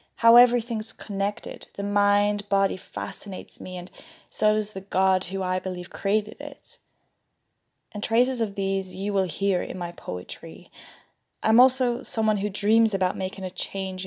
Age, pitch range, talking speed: 10-29, 175-200 Hz, 155 wpm